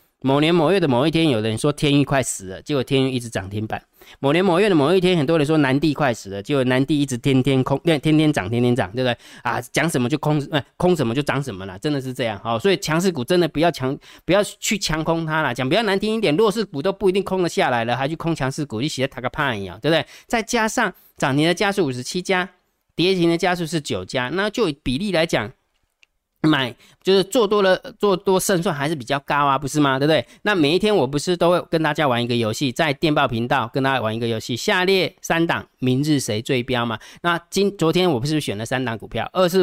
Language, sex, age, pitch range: Chinese, male, 20-39, 125-175 Hz